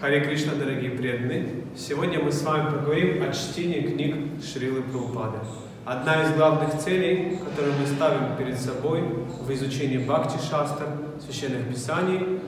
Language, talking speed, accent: Russian, 135 wpm, native